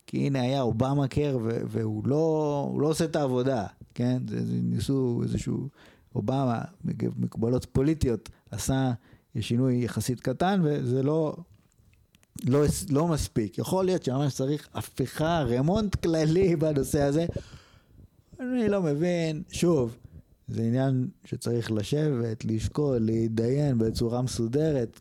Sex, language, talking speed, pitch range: male, Hebrew, 120 wpm, 115-155 Hz